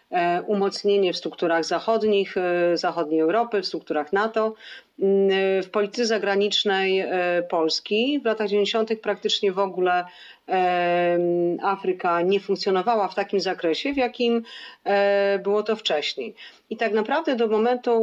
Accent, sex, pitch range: native, female, 170-215 Hz